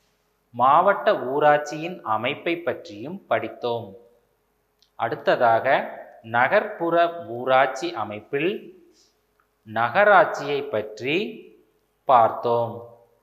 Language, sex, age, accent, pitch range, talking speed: Tamil, male, 30-49, native, 115-175 Hz, 55 wpm